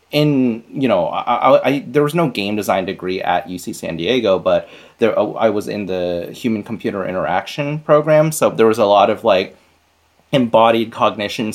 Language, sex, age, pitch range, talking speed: English, male, 30-49, 95-135 Hz, 180 wpm